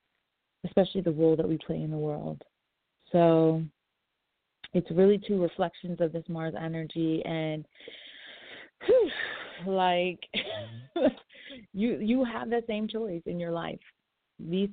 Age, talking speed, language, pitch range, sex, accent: 30-49, 125 wpm, English, 160-180 Hz, female, American